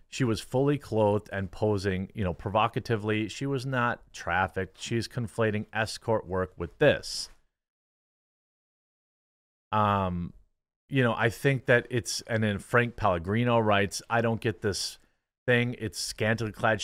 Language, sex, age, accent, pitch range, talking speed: English, male, 30-49, American, 95-115 Hz, 140 wpm